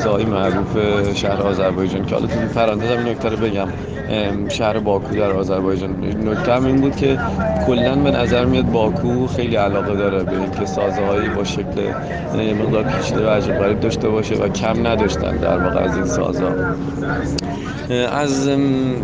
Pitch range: 95-130 Hz